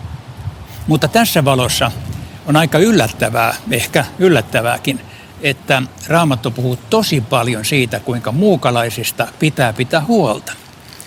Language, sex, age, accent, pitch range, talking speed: Finnish, male, 60-79, native, 115-155 Hz, 105 wpm